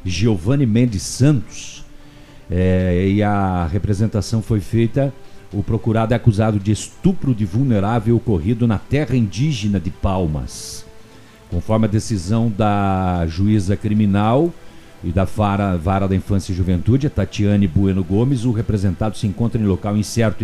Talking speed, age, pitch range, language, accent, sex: 140 wpm, 50-69, 95-120 Hz, Portuguese, Brazilian, male